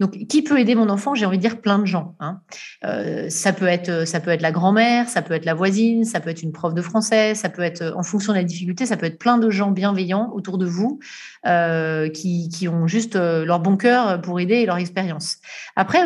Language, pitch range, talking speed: French, 175-215 Hz, 250 wpm